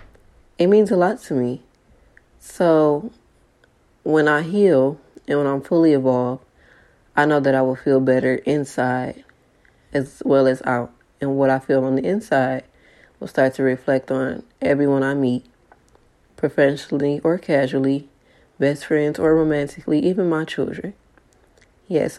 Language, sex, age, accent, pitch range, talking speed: English, female, 20-39, American, 130-150 Hz, 145 wpm